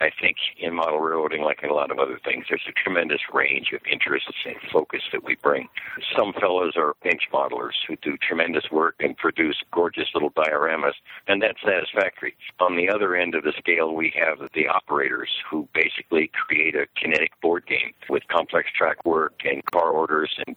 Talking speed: 195 wpm